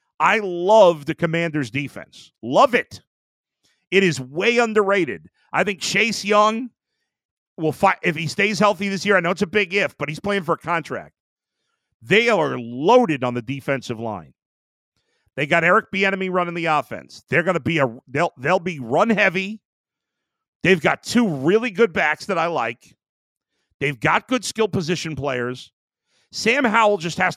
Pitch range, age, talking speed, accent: 140-210 Hz, 50-69, 170 wpm, American